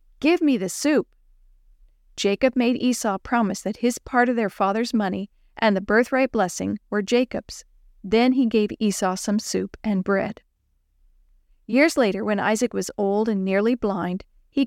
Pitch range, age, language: 200-255 Hz, 50-69, English